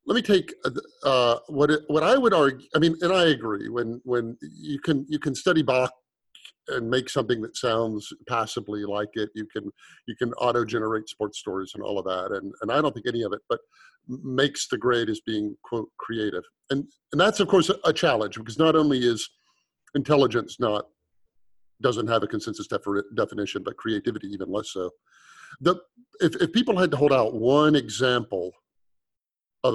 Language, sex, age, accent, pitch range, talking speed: English, male, 50-69, American, 110-150 Hz, 190 wpm